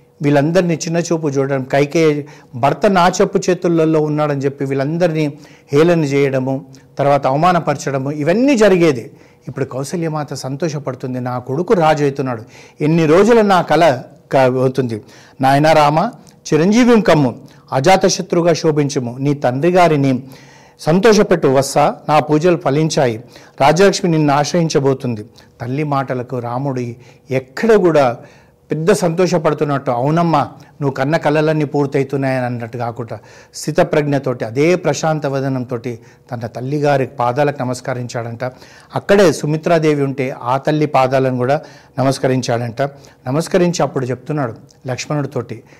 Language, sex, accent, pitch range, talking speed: Telugu, male, native, 130-160 Hz, 105 wpm